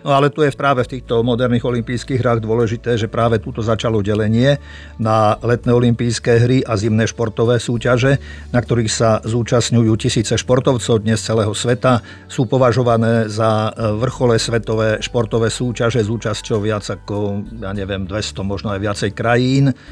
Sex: male